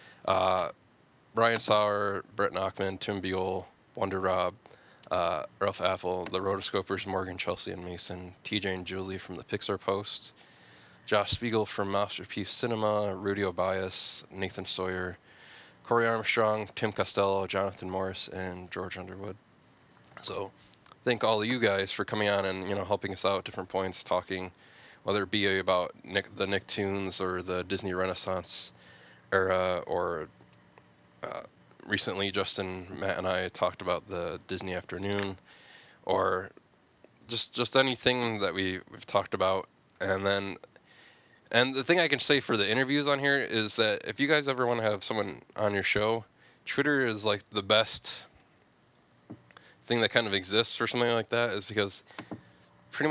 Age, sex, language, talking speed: 20-39, male, English, 155 wpm